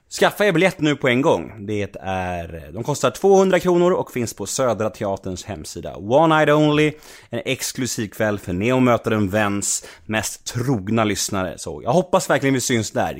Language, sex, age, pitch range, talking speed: Swedish, male, 30-49, 95-140 Hz, 175 wpm